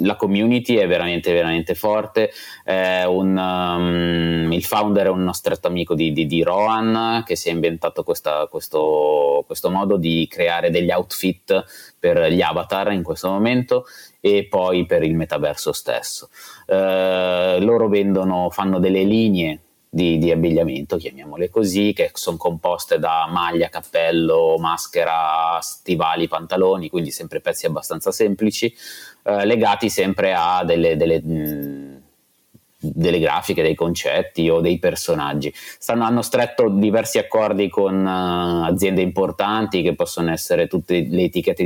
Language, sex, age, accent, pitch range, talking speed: Italian, male, 20-39, native, 85-115 Hz, 135 wpm